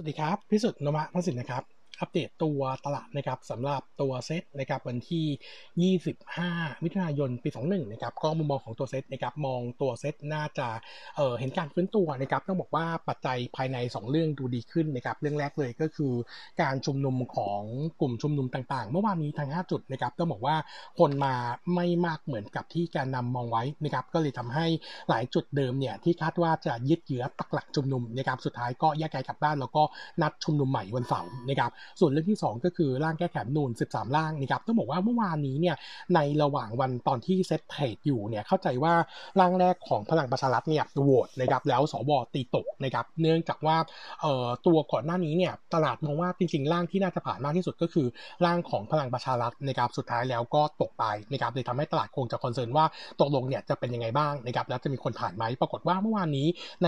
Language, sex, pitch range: Thai, male, 130-170 Hz